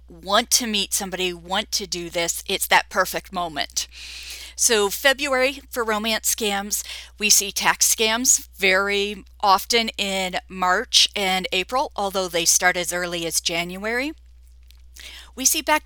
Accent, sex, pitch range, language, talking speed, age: American, female, 185-245 Hz, English, 140 wpm, 40-59